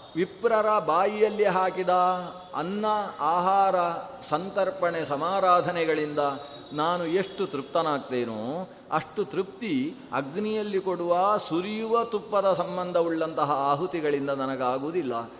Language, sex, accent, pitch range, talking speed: Kannada, male, native, 165-215 Hz, 75 wpm